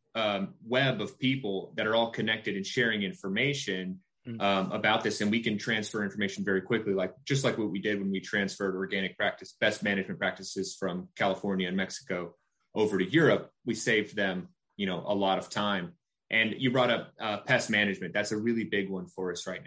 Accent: American